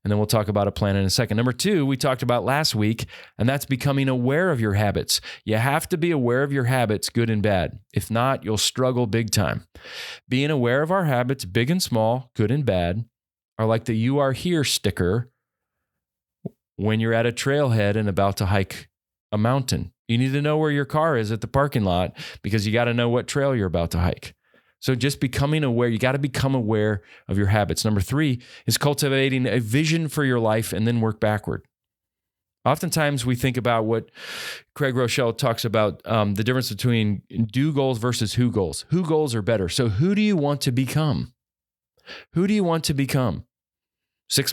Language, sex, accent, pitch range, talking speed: English, male, American, 105-140 Hz, 210 wpm